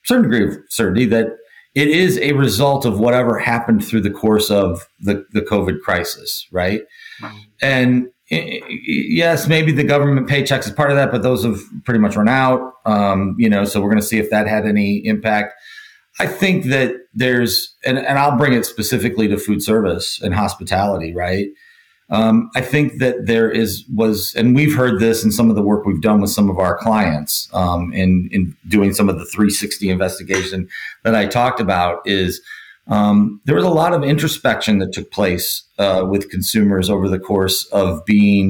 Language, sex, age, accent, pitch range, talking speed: English, male, 40-59, American, 100-125 Hz, 190 wpm